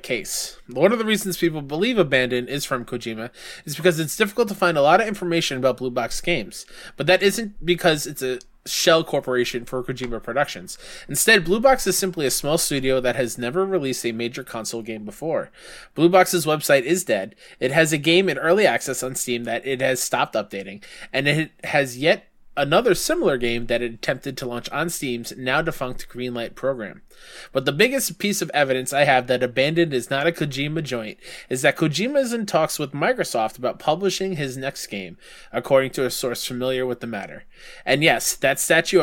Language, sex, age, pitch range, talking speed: English, male, 20-39, 125-180 Hz, 200 wpm